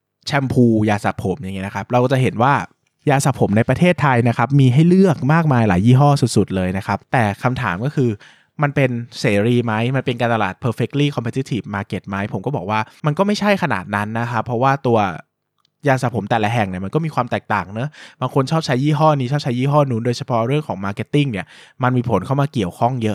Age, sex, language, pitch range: 20-39, male, Thai, 105-135 Hz